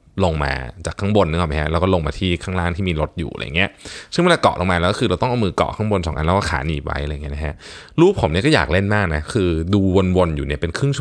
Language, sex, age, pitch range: Thai, male, 20-39, 80-110 Hz